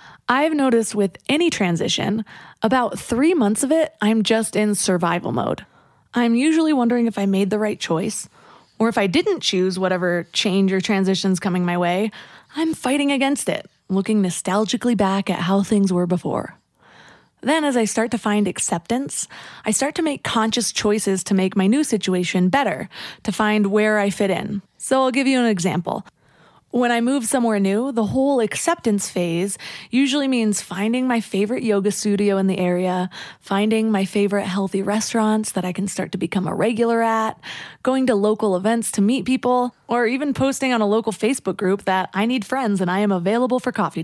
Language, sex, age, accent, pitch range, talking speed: English, female, 20-39, American, 195-245 Hz, 185 wpm